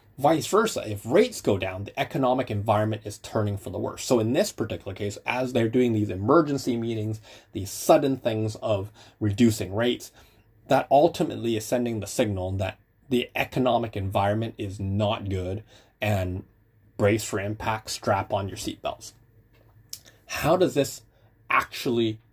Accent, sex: American, male